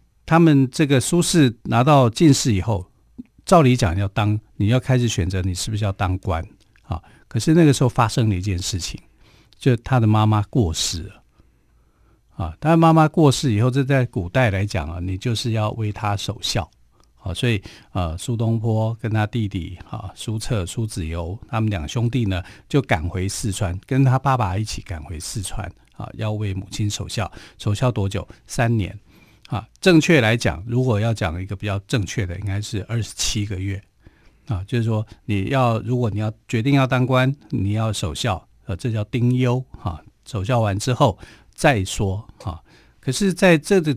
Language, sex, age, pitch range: Chinese, male, 50-69, 100-125 Hz